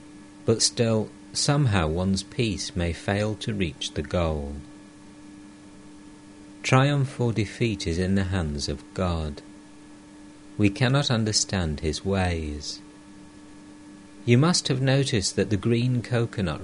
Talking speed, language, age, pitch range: 120 wpm, English, 50-69, 95-110 Hz